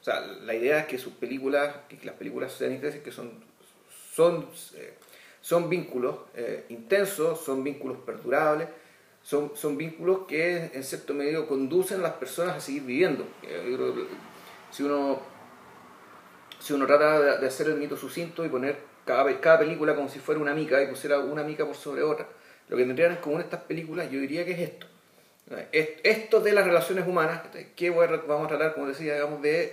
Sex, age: male, 30-49